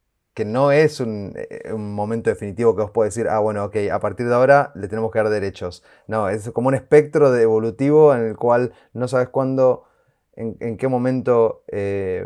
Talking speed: 200 wpm